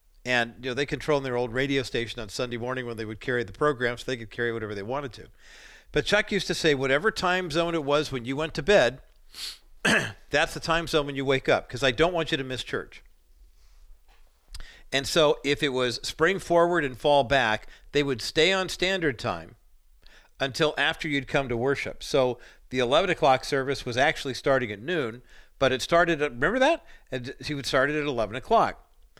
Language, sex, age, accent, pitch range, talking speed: English, male, 50-69, American, 120-150 Hz, 215 wpm